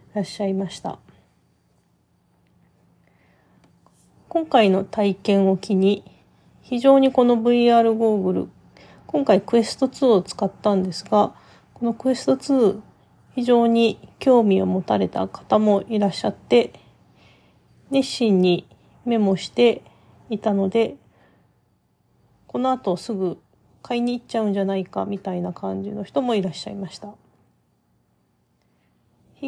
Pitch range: 195-240 Hz